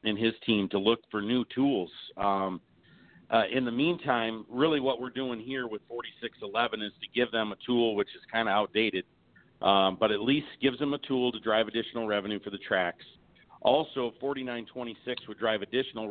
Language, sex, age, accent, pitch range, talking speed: English, male, 50-69, American, 105-125 Hz, 190 wpm